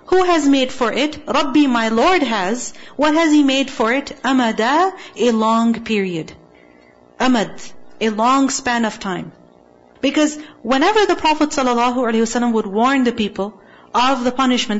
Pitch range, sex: 195-275 Hz, female